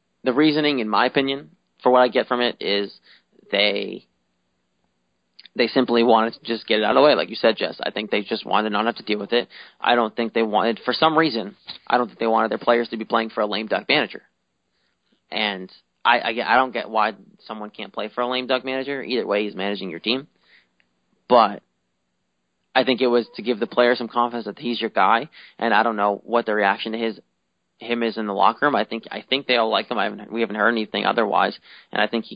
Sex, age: male, 20-39